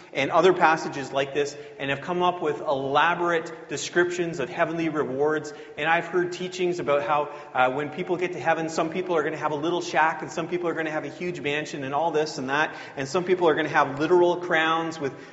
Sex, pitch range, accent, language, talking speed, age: male, 135-160 Hz, American, English, 240 wpm, 30-49